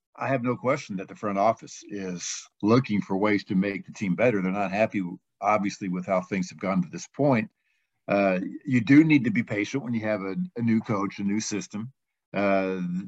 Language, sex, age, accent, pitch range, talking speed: English, male, 50-69, American, 100-120 Hz, 215 wpm